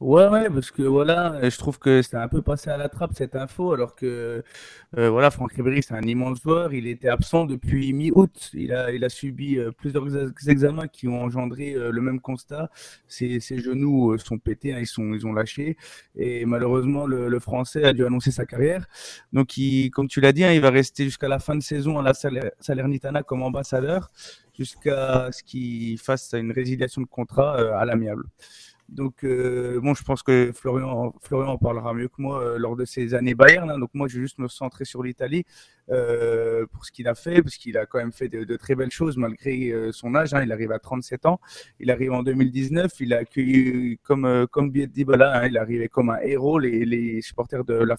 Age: 30-49